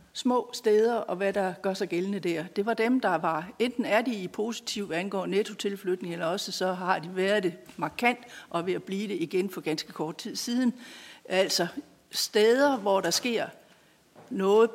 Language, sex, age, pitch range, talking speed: Danish, female, 60-79, 180-230 Hz, 185 wpm